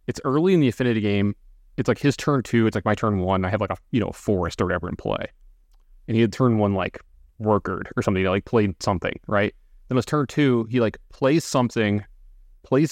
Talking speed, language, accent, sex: 230 wpm, English, American, male